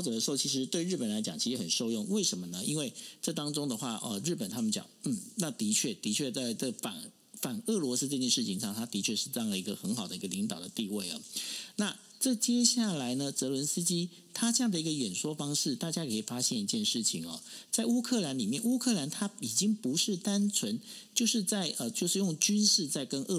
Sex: male